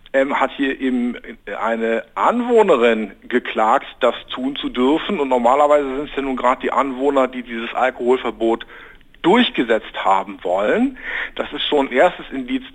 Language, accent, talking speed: German, German, 145 wpm